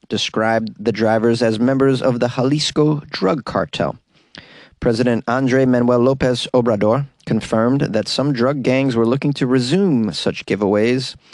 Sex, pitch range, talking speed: male, 110-135 Hz, 140 wpm